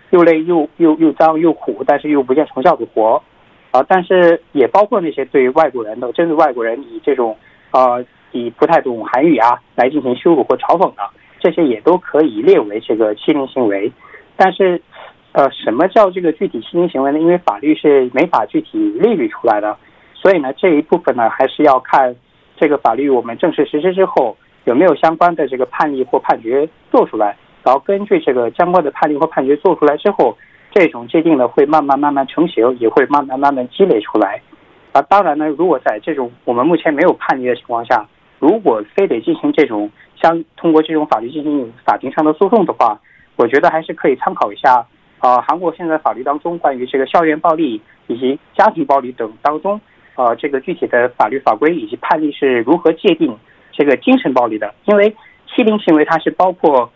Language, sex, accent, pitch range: Korean, male, Chinese, 140-200 Hz